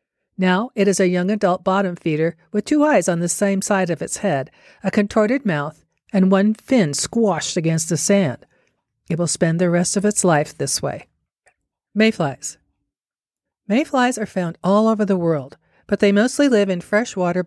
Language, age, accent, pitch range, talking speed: English, 50-69, American, 165-210 Hz, 180 wpm